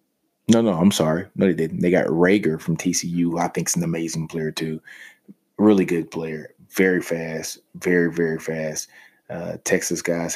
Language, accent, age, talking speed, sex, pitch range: English, American, 20-39, 175 wpm, male, 80-90 Hz